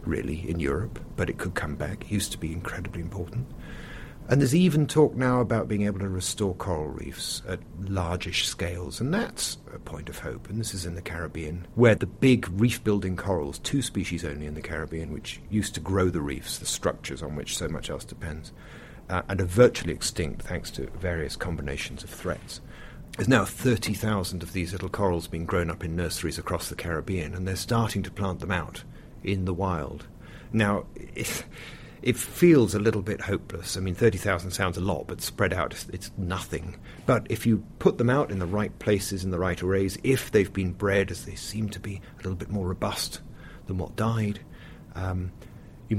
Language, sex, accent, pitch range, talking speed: English, male, British, 90-105 Hz, 200 wpm